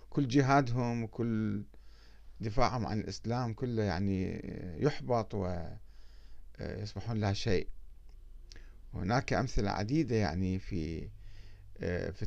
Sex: male